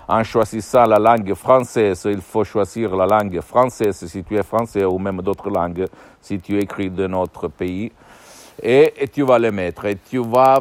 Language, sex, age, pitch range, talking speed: Italian, male, 60-79, 95-120 Hz, 190 wpm